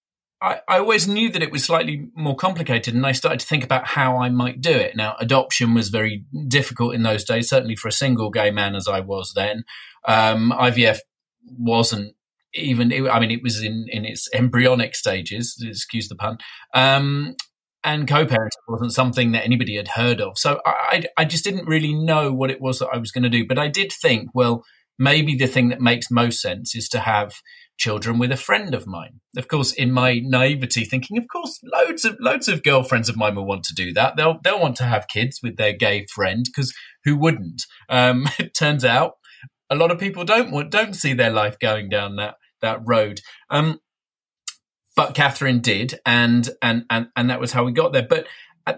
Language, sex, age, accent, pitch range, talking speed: English, male, 40-59, British, 115-145 Hz, 210 wpm